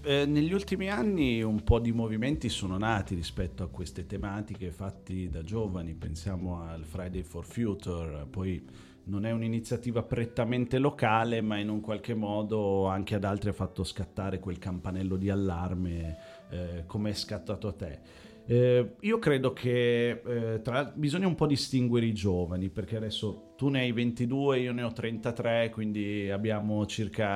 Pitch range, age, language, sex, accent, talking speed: 95-120 Hz, 40-59, Italian, male, native, 160 wpm